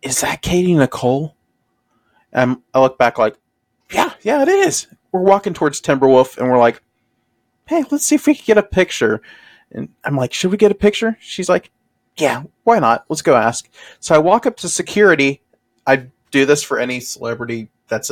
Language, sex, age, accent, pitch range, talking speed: English, male, 30-49, American, 125-185 Hz, 190 wpm